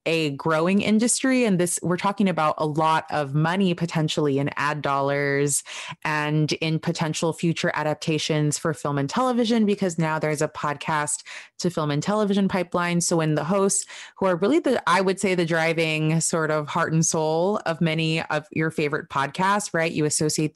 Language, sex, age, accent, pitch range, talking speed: English, female, 20-39, American, 150-175 Hz, 180 wpm